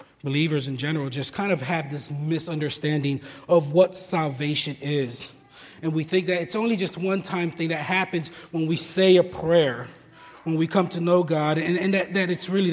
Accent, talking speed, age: American, 200 wpm, 30-49